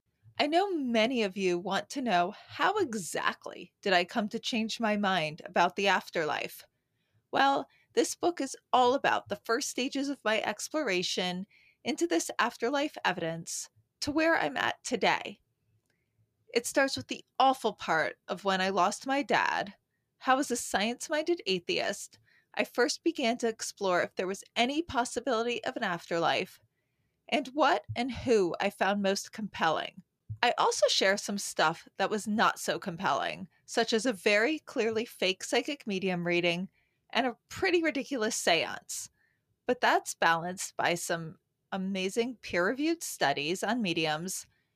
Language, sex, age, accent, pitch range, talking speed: English, female, 20-39, American, 185-255 Hz, 150 wpm